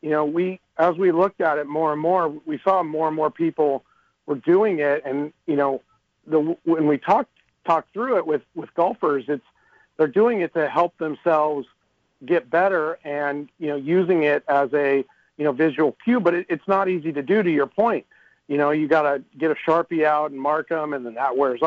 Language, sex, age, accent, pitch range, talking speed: English, male, 40-59, American, 145-170 Hz, 220 wpm